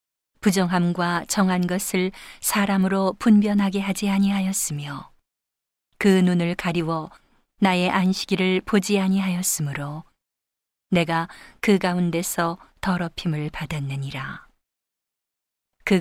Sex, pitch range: female, 165-195 Hz